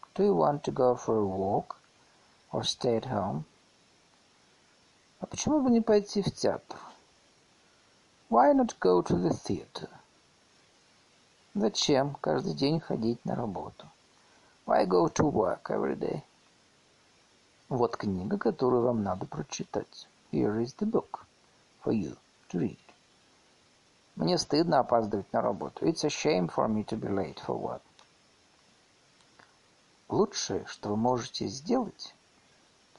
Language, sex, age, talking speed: Russian, male, 50-69, 130 wpm